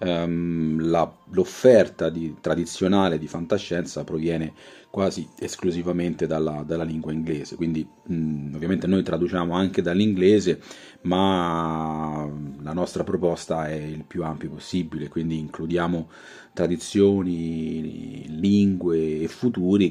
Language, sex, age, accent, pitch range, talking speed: Italian, male, 30-49, native, 80-100 Hz, 110 wpm